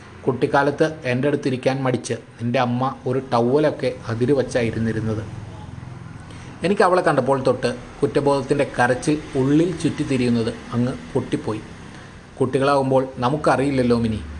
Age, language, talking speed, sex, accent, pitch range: 20-39, Malayalam, 95 wpm, male, native, 120-145 Hz